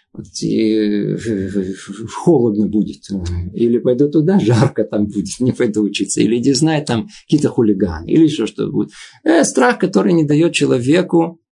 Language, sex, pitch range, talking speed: Russian, male, 120-170 Hz, 140 wpm